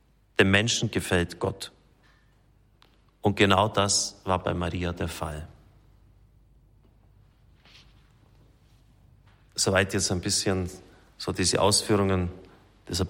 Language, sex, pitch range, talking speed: German, male, 95-105 Hz, 90 wpm